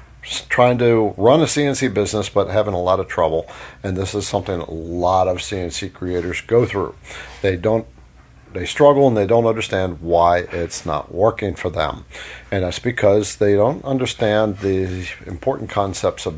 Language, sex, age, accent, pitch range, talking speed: English, male, 50-69, American, 95-120 Hz, 170 wpm